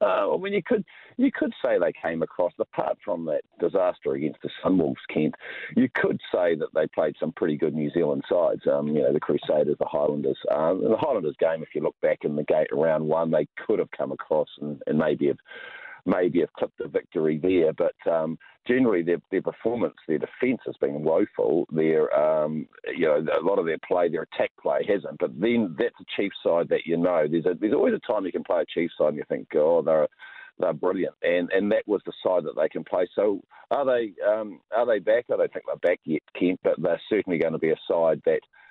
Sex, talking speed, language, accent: male, 235 wpm, English, Australian